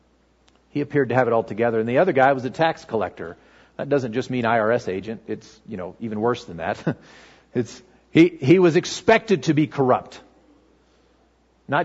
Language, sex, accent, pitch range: English, male, American, 115-160 Hz